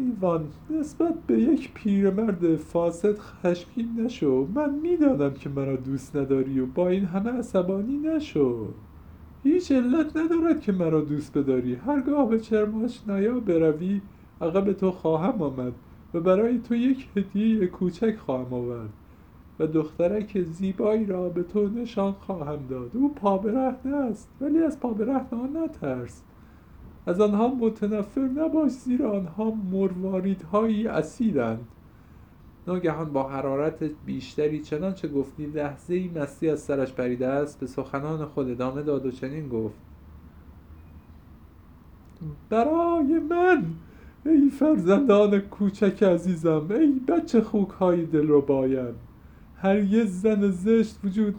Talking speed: 130 wpm